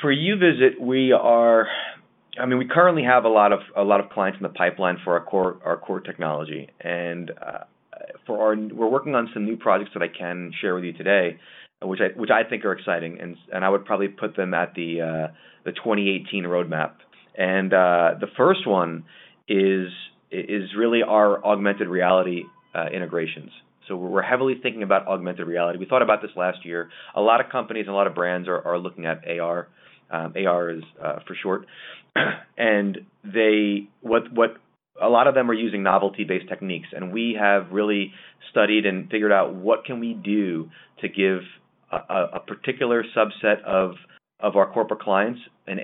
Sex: male